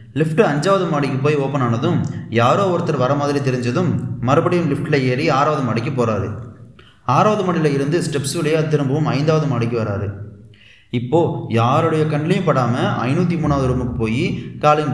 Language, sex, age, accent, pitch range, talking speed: Tamil, male, 30-49, native, 120-155 Hz, 135 wpm